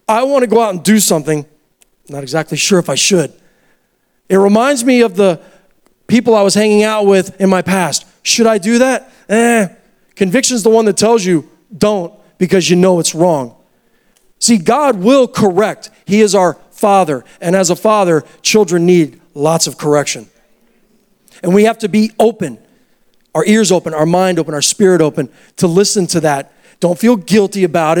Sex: male